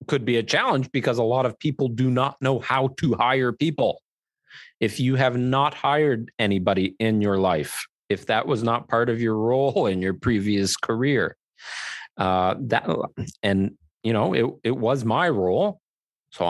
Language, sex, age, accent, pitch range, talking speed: English, male, 40-59, American, 95-135 Hz, 175 wpm